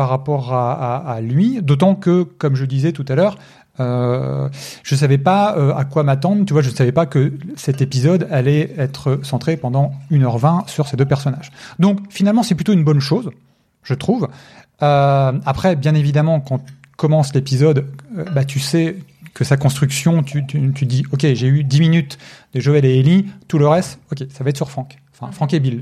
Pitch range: 140-175 Hz